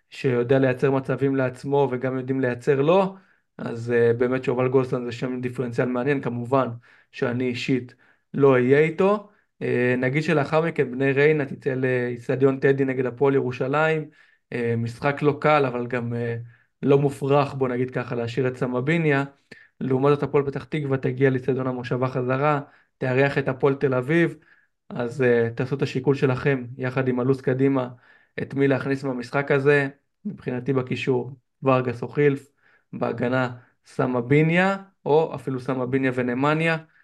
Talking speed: 130 wpm